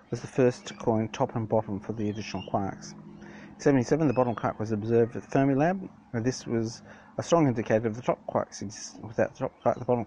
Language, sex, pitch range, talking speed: English, male, 110-125 Hz, 220 wpm